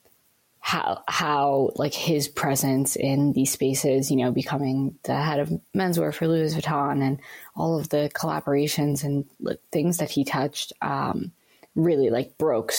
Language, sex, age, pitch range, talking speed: English, female, 20-39, 135-155 Hz, 155 wpm